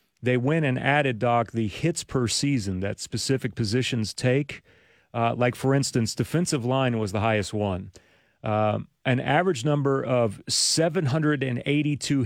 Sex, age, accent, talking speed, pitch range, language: male, 40-59, American, 140 wpm, 120-150 Hz, English